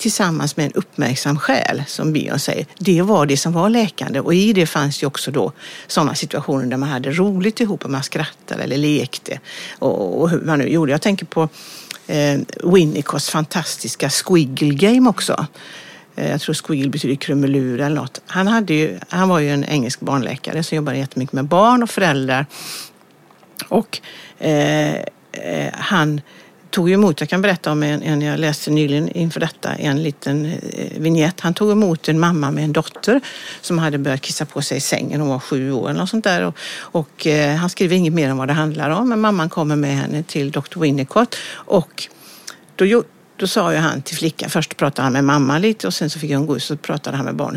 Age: 60-79